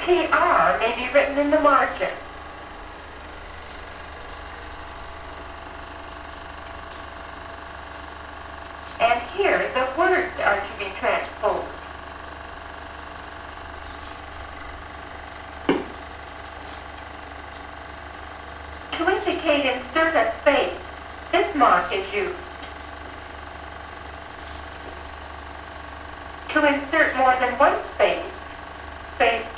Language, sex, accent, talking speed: English, female, American, 65 wpm